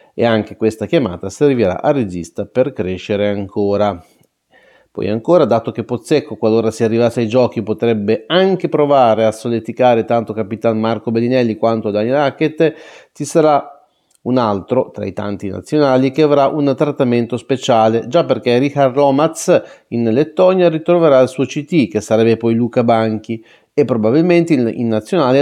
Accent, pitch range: native, 115-150 Hz